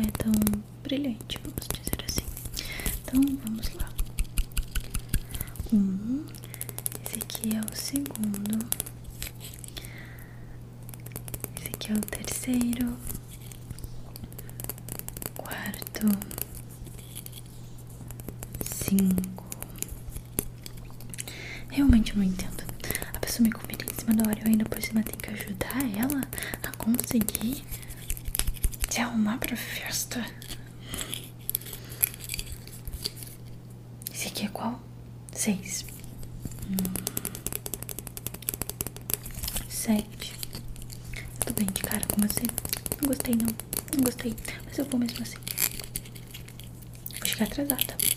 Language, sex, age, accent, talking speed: Portuguese, female, 20-39, Brazilian, 90 wpm